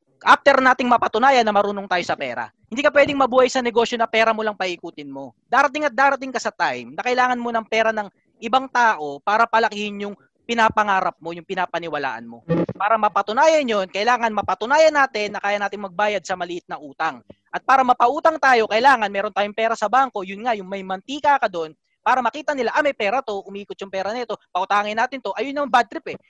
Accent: native